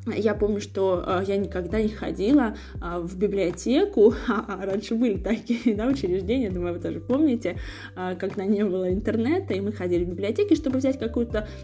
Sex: female